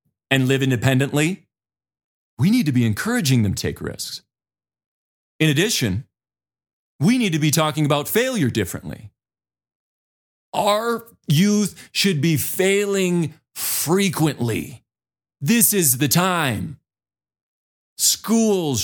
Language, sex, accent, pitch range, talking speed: English, male, American, 120-185 Hz, 105 wpm